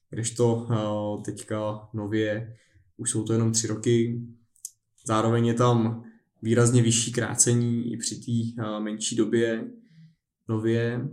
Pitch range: 110-120 Hz